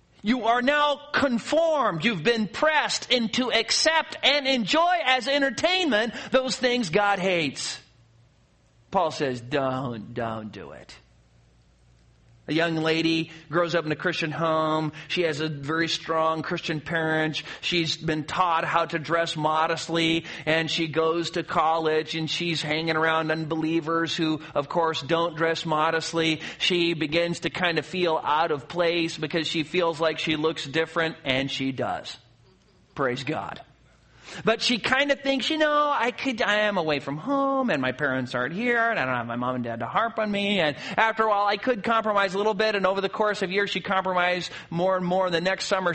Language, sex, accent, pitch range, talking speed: English, male, American, 160-265 Hz, 180 wpm